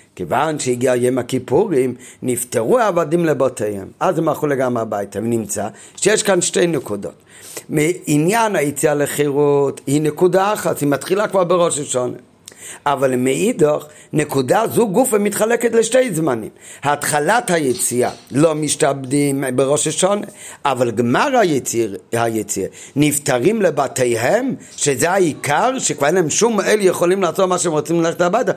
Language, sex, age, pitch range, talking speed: Hebrew, male, 50-69, 135-180 Hz, 130 wpm